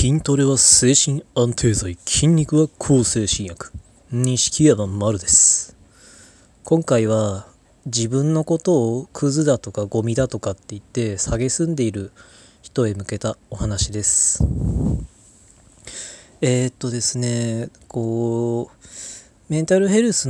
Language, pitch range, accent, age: Japanese, 110-130 Hz, native, 20-39